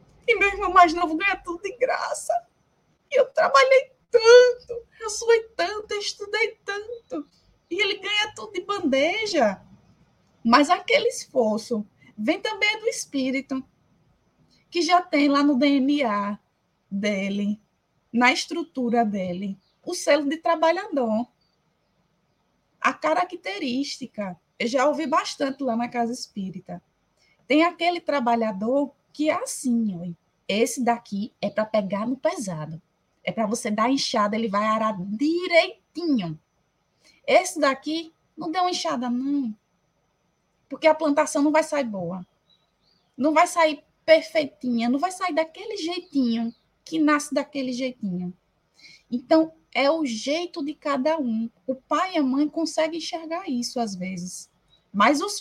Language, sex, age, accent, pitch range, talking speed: Portuguese, female, 20-39, Brazilian, 235-345 Hz, 130 wpm